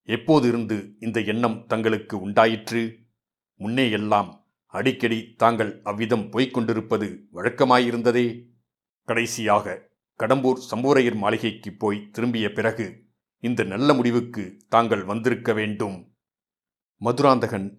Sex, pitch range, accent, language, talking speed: male, 105-115 Hz, native, Tamil, 90 wpm